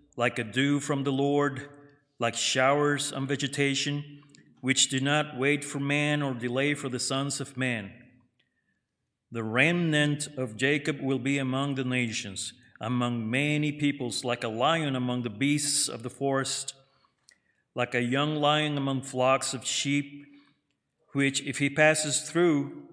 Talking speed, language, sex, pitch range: 150 wpm, English, male, 125-145 Hz